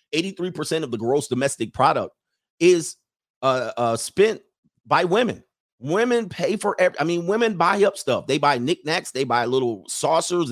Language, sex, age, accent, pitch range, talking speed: English, male, 40-59, American, 120-160 Hz, 165 wpm